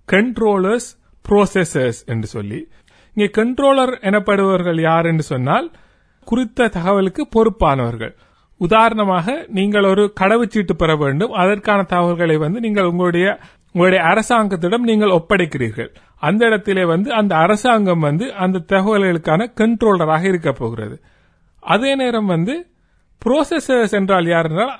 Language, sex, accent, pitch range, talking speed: Tamil, male, native, 175-225 Hz, 110 wpm